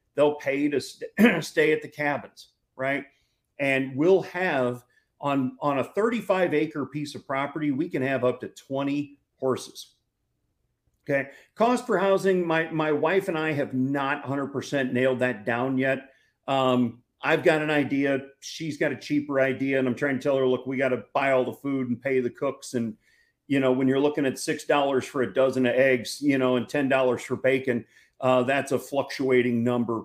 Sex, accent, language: male, American, English